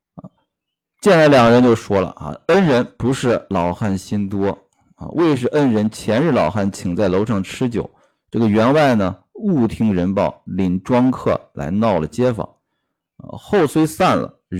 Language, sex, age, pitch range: Chinese, male, 50-69, 95-125 Hz